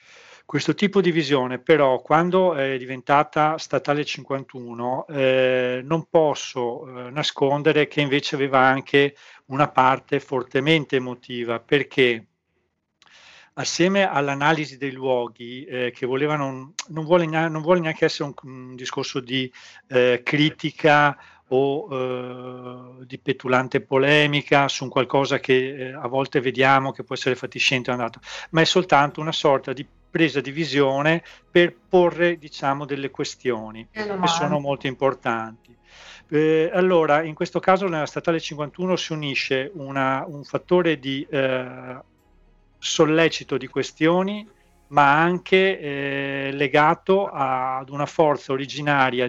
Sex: male